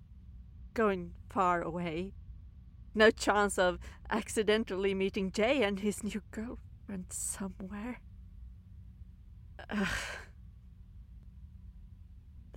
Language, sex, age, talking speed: English, female, 40-59, 70 wpm